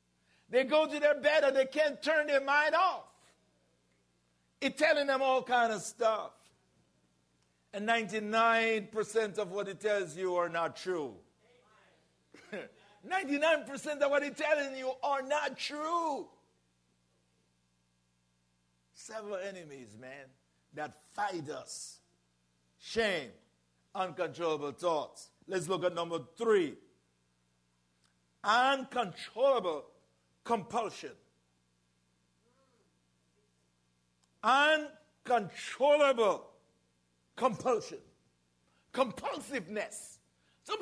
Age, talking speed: 60-79, 85 wpm